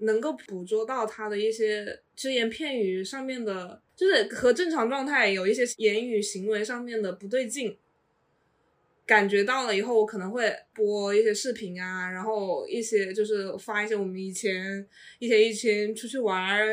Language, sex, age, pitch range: Chinese, female, 20-39, 200-245 Hz